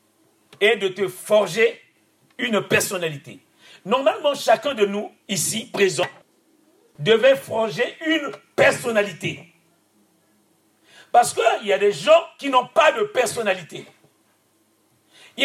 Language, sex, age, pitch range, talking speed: French, male, 50-69, 245-330 Hz, 115 wpm